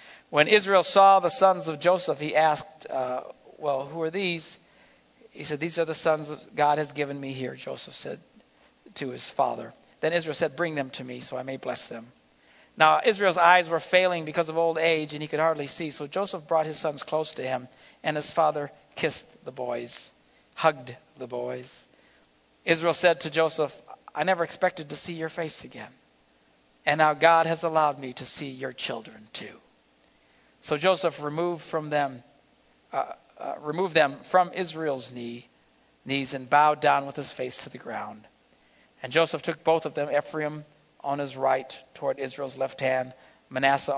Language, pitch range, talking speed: English, 130-165 Hz, 175 wpm